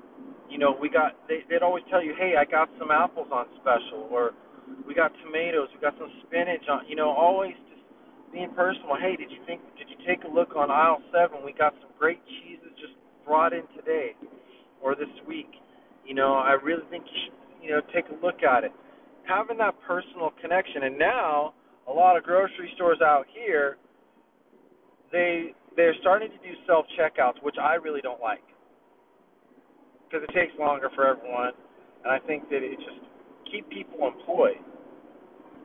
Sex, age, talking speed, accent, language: male, 30-49, 185 wpm, American, English